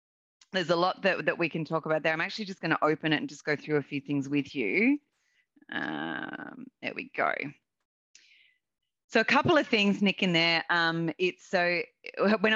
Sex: female